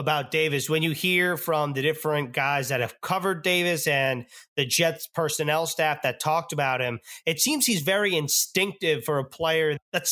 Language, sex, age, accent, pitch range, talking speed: English, male, 30-49, American, 145-175 Hz, 185 wpm